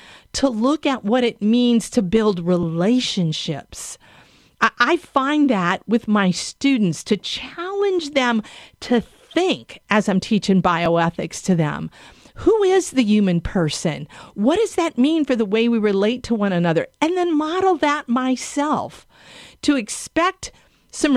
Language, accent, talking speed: English, American, 145 wpm